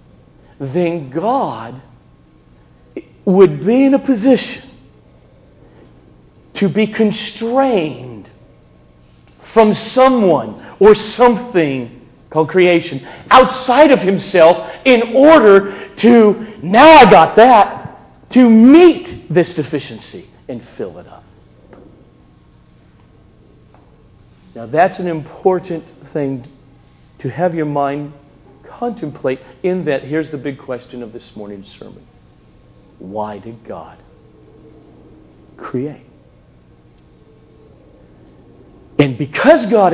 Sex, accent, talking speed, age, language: male, American, 90 wpm, 50-69, English